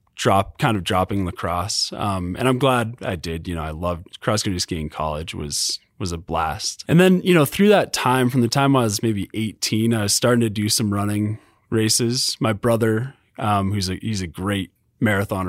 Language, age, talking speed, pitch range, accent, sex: English, 20-39, 205 wpm, 90-120 Hz, American, male